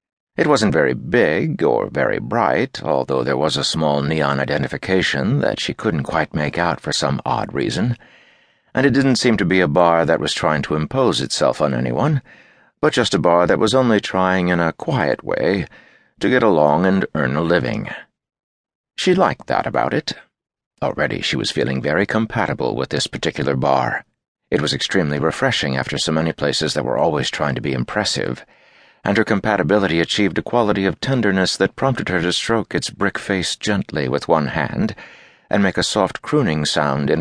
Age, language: 60-79, English